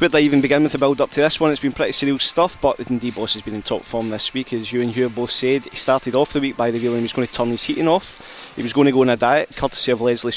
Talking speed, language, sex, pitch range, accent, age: 340 wpm, English, male, 115-140 Hz, British, 20-39